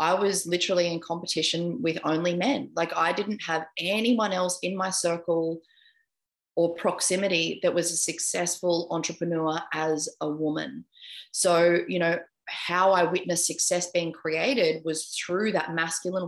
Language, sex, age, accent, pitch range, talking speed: English, female, 20-39, Australian, 165-195 Hz, 145 wpm